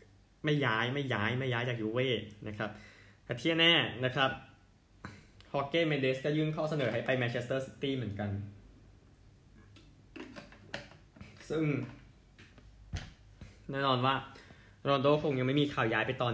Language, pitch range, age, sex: Thai, 105-130 Hz, 20-39, male